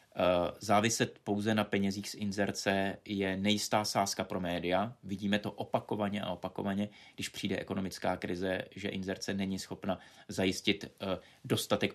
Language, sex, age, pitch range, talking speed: Czech, male, 30-49, 95-110 Hz, 130 wpm